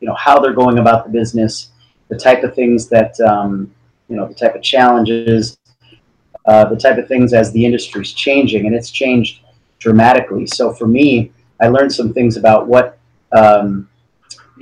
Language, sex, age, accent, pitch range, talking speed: English, male, 30-49, American, 110-125 Hz, 175 wpm